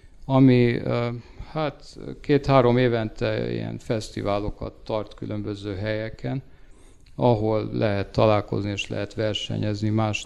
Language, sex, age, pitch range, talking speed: Hungarian, male, 50-69, 105-120 Hz, 95 wpm